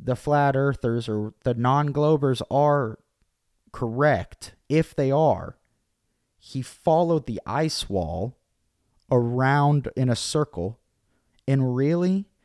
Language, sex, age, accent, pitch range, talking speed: English, male, 30-49, American, 105-135 Hz, 105 wpm